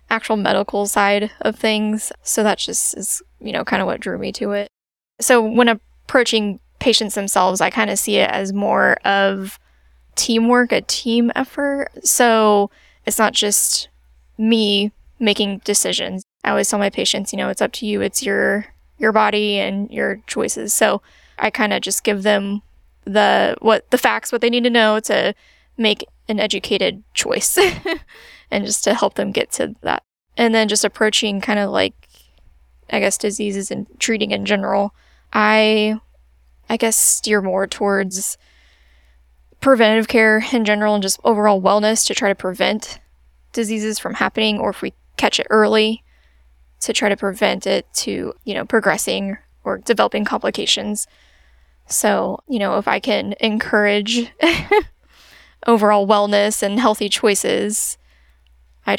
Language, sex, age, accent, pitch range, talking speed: English, female, 10-29, American, 195-220 Hz, 160 wpm